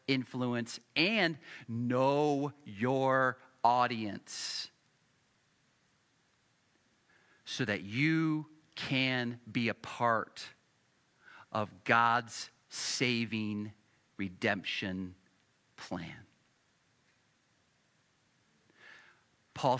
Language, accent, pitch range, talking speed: English, American, 115-185 Hz, 55 wpm